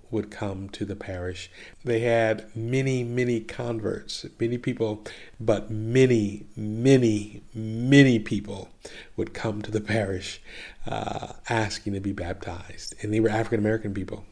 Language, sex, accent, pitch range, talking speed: English, male, American, 105-120 Hz, 135 wpm